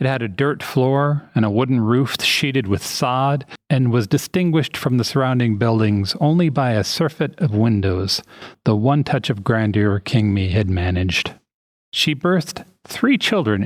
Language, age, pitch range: English, 40-59, 105-135 Hz